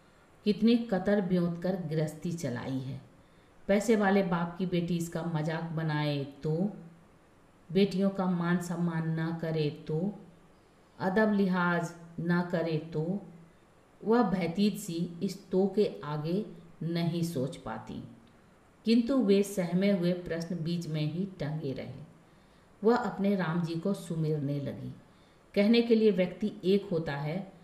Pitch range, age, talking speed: 160-200 Hz, 50-69, 130 wpm